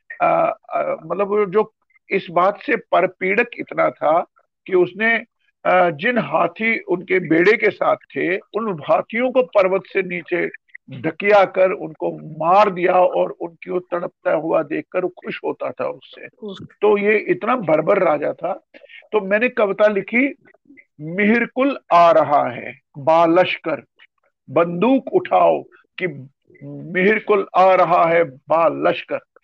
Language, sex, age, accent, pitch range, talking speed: Hindi, male, 50-69, native, 180-240 Hz, 125 wpm